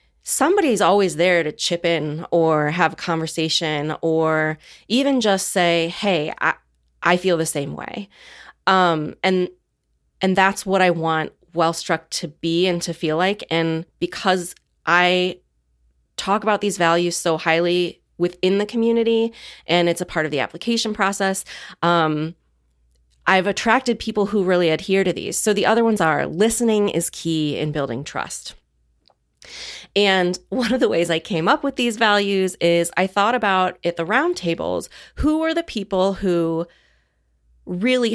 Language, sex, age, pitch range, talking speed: English, female, 30-49, 165-215 Hz, 155 wpm